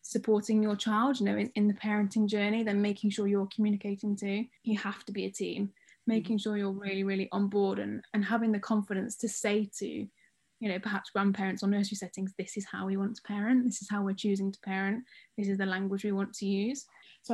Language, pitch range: English, 195-215 Hz